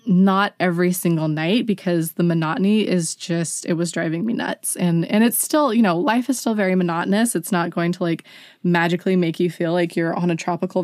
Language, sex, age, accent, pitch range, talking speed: English, female, 20-39, American, 170-210 Hz, 215 wpm